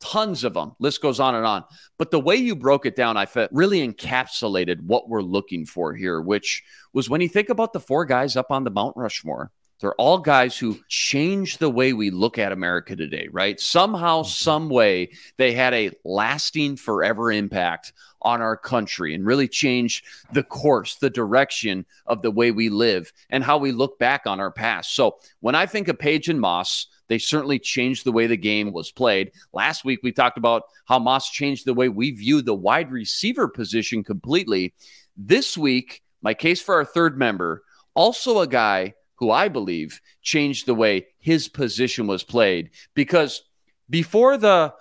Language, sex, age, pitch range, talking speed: English, male, 40-59, 105-150 Hz, 190 wpm